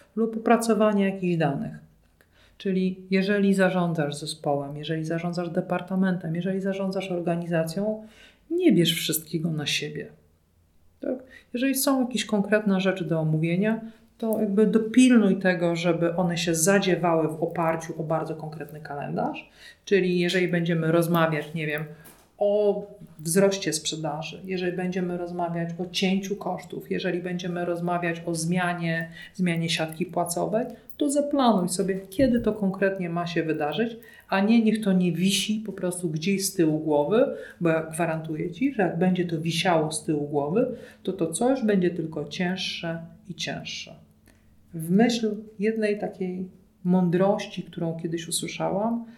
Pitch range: 165-205 Hz